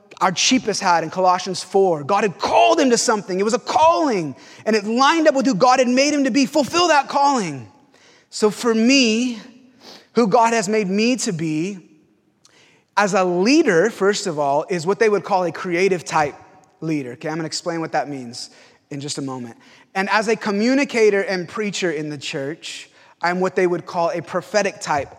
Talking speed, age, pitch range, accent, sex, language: 200 wpm, 30-49, 165-230 Hz, American, male, English